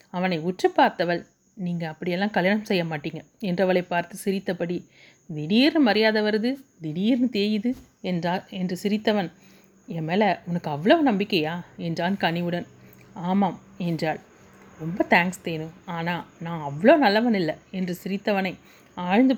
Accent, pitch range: native, 175-225 Hz